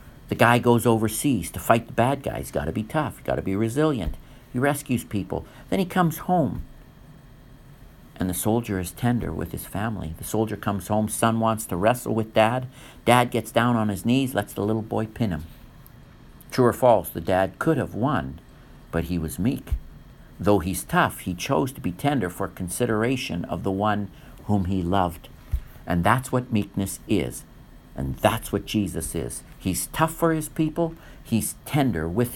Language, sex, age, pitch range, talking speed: English, male, 50-69, 95-130 Hz, 180 wpm